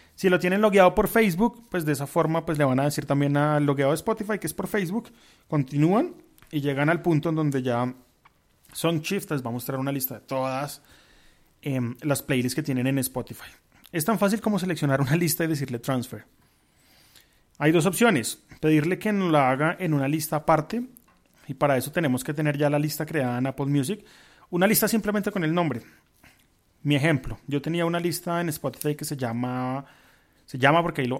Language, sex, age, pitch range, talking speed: Spanish, male, 30-49, 140-180 Hz, 200 wpm